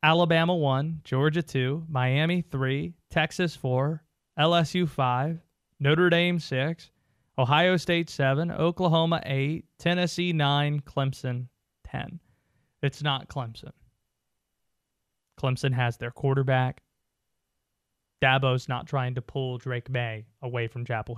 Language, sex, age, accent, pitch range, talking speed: English, male, 20-39, American, 135-190 Hz, 110 wpm